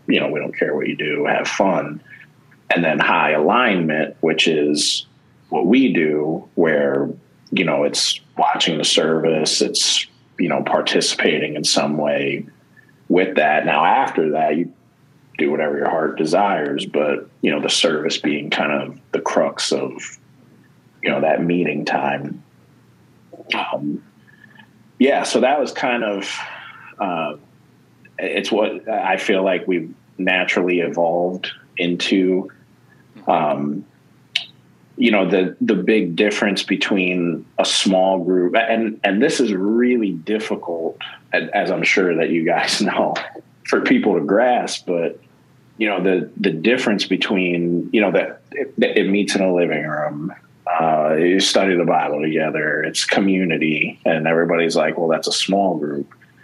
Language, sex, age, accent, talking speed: English, male, 40-59, American, 145 wpm